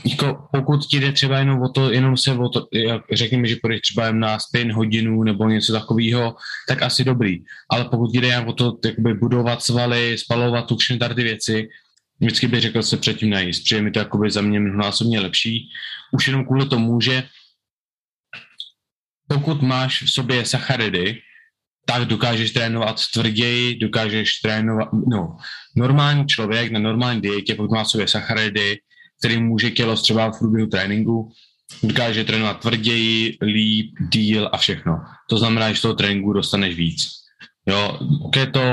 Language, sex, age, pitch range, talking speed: Czech, male, 20-39, 110-125 Hz, 150 wpm